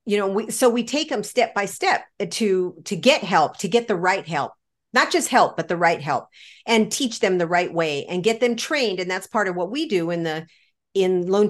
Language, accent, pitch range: English, American, 180-240 Hz